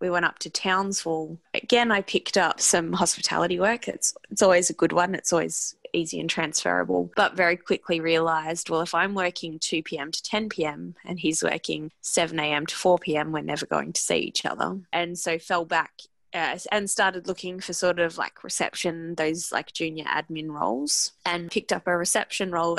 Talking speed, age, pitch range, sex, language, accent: 185 wpm, 20-39, 165-195 Hz, female, English, Australian